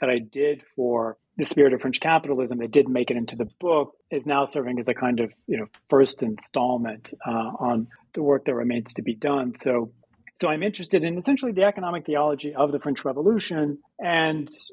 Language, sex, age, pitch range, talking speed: English, male, 40-59, 125-170 Hz, 205 wpm